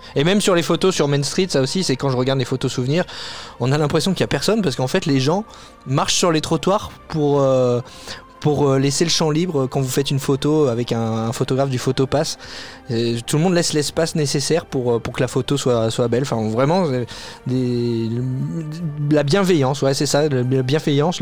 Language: French